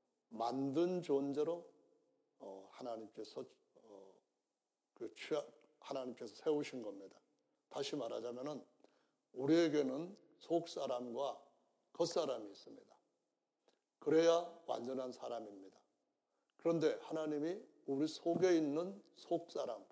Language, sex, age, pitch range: Korean, male, 60-79, 140-190 Hz